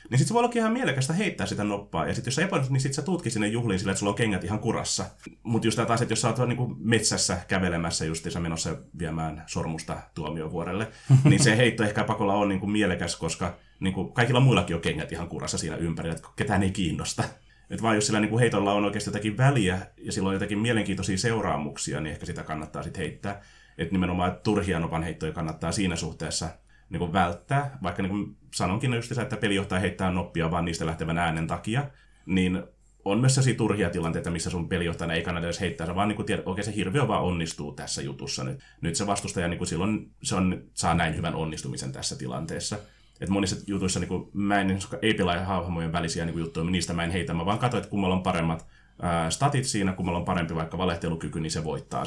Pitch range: 85-110 Hz